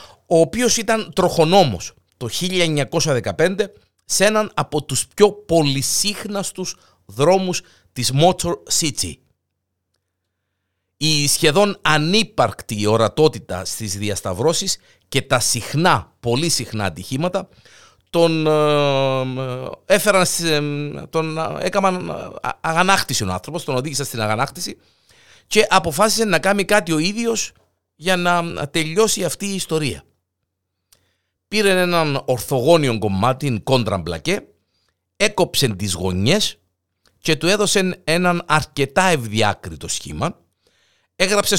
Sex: male